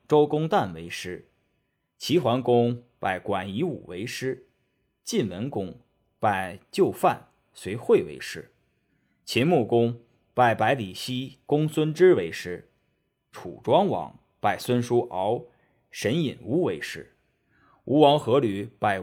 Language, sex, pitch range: Chinese, male, 105-140 Hz